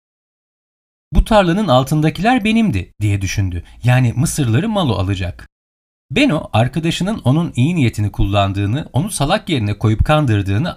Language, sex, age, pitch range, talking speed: Turkish, male, 40-59, 95-150 Hz, 115 wpm